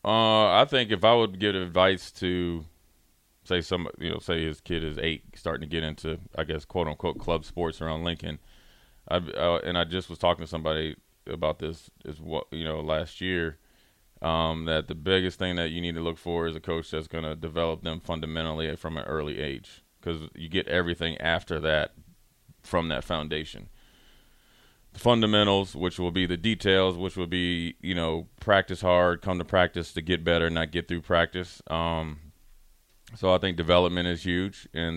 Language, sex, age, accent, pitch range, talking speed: English, male, 30-49, American, 80-90 Hz, 190 wpm